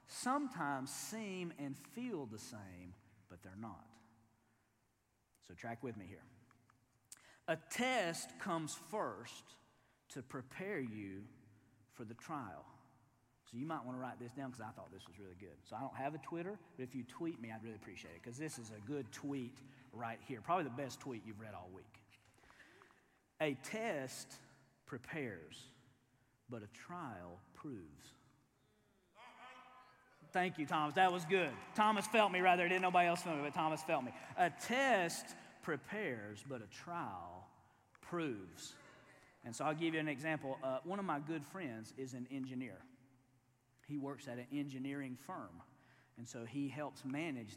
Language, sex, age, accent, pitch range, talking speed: English, male, 40-59, American, 115-155 Hz, 165 wpm